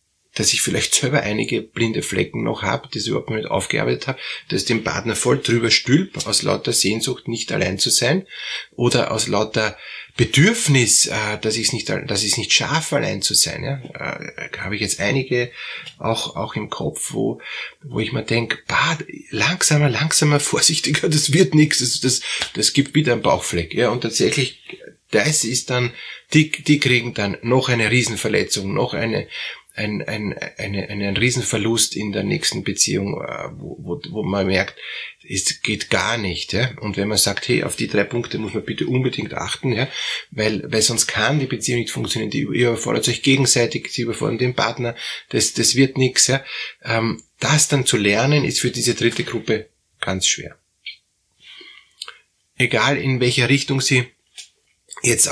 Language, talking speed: German, 175 wpm